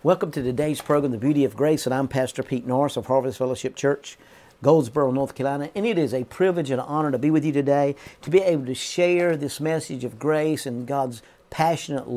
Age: 50-69